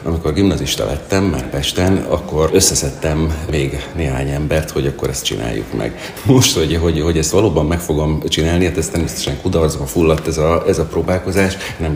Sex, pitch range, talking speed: male, 75-85 Hz, 180 wpm